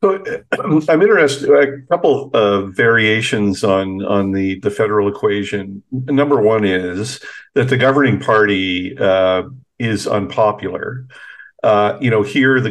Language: English